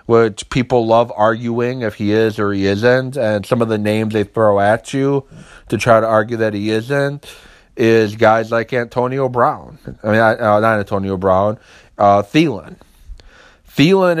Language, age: English, 30-49